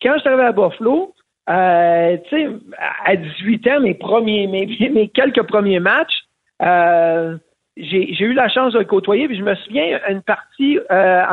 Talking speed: 175 wpm